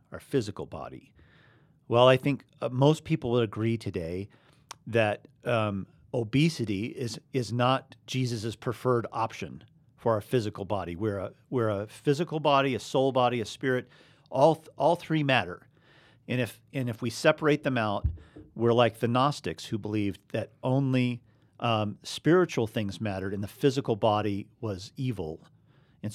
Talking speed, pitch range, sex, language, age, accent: 155 wpm, 110-140 Hz, male, English, 50-69, American